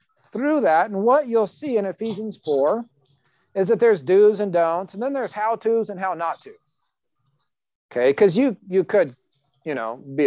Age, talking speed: 40-59, 185 wpm